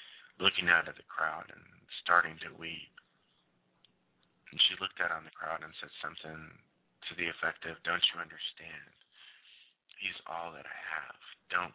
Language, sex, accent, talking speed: English, male, American, 165 wpm